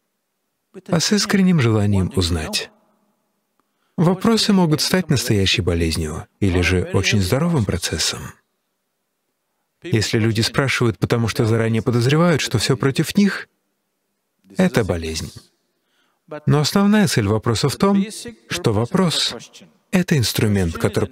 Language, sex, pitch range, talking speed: Russian, male, 105-175 Hz, 115 wpm